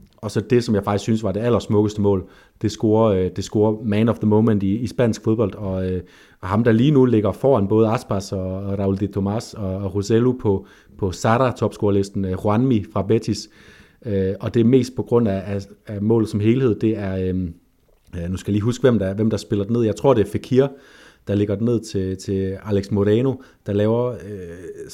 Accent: native